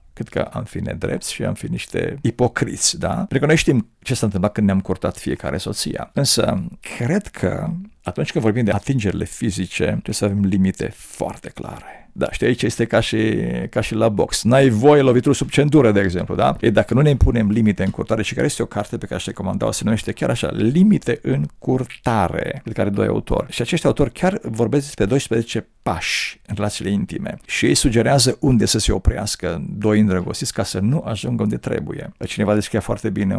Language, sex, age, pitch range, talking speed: Romanian, male, 50-69, 100-135 Hz, 205 wpm